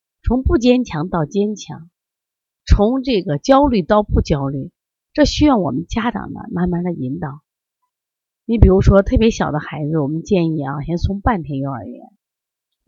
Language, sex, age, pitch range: Chinese, female, 30-49, 150-230 Hz